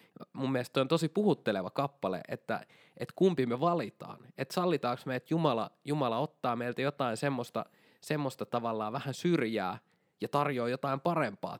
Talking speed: 145 wpm